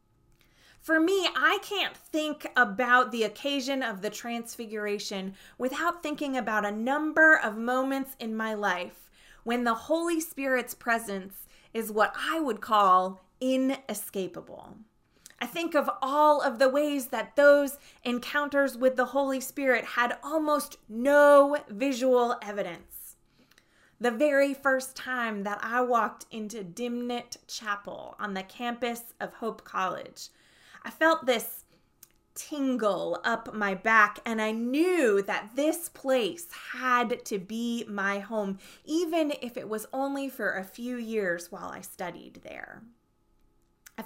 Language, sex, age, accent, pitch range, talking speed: English, female, 20-39, American, 205-275 Hz, 135 wpm